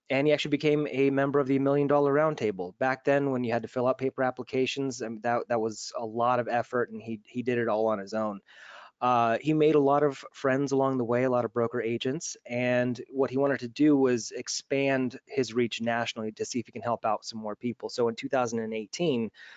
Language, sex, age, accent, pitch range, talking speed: English, male, 20-39, American, 115-135 Hz, 235 wpm